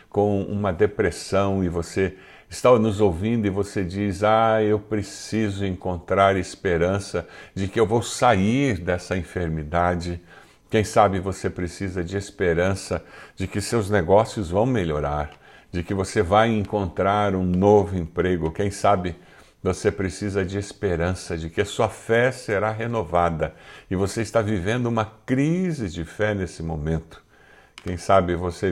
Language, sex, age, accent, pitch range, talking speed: Portuguese, male, 60-79, Brazilian, 90-115 Hz, 145 wpm